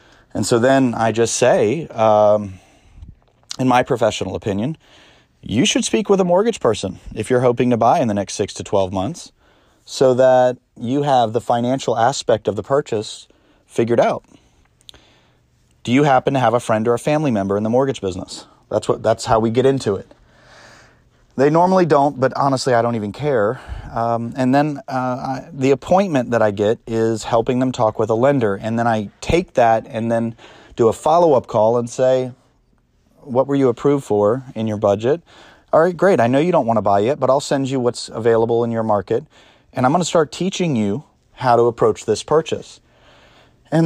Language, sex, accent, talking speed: English, male, American, 200 wpm